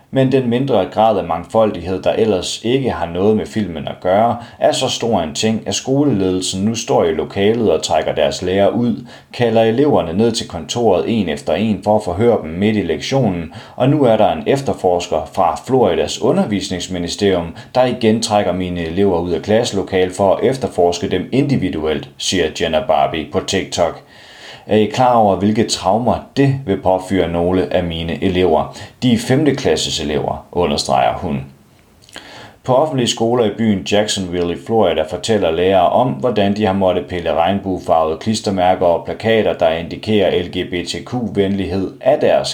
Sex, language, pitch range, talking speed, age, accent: male, Danish, 90-115 Hz, 165 wpm, 30-49, native